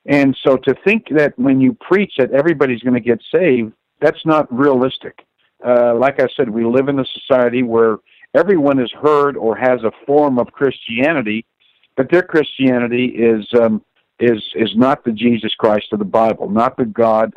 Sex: male